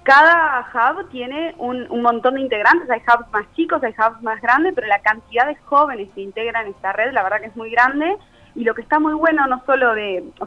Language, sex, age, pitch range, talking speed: Spanish, female, 20-39, 220-275 Hz, 235 wpm